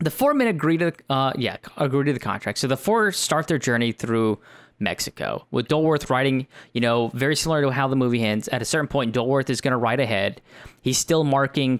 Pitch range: 110-135 Hz